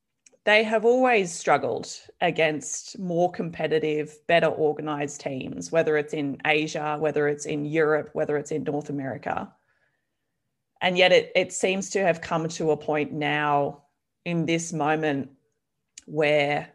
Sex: female